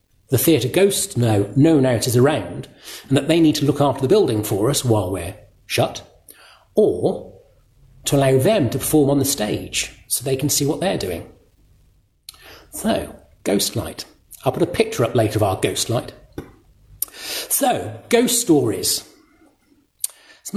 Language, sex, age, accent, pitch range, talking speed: English, male, 40-59, British, 120-160 Hz, 160 wpm